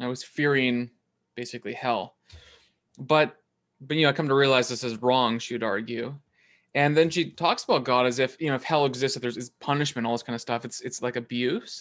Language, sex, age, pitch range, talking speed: English, male, 20-39, 120-150 Hz, 225 wpm